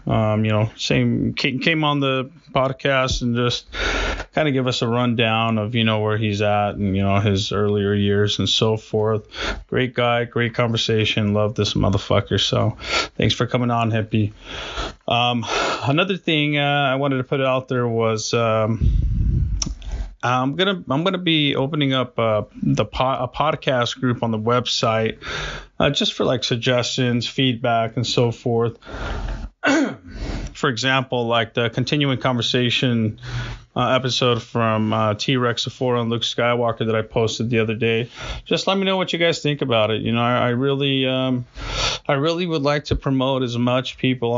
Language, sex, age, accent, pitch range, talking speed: English, male, 30-49, American, 110-130 Hz, 170 wpm